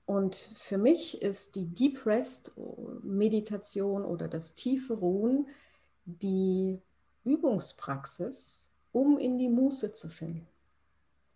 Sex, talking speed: female, 105 wpm